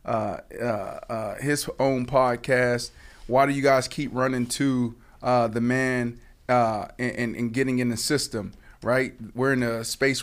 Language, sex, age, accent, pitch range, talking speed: English, male, 20-39, American, 115-130 Hz, 165 wpm